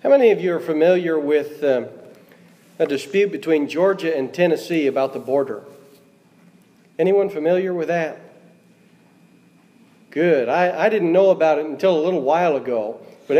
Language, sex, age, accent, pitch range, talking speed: English, male, 40-59, American, 155-205 Hz, 150 wpm